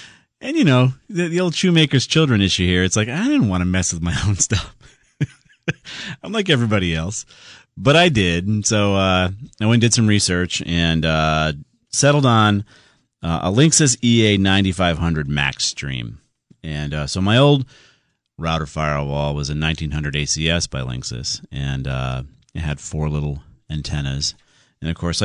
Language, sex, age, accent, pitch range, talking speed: English, male, 40-59, American, 75-105 Hz, 165 wpm